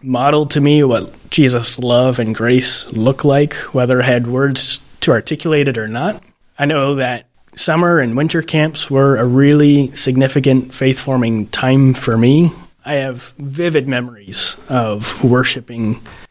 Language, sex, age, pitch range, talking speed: English, male, 30-49, 110-135 Hz, 145 wpm